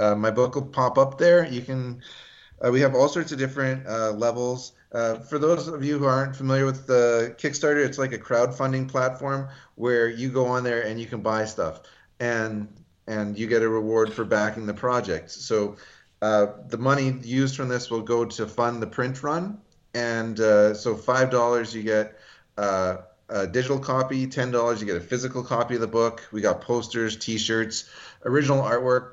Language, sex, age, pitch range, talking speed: English, male, 30-49, 110-130 Hz, 200 wpm